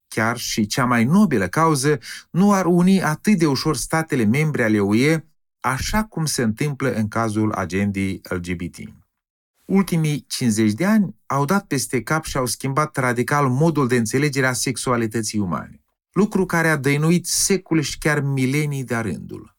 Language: Romanian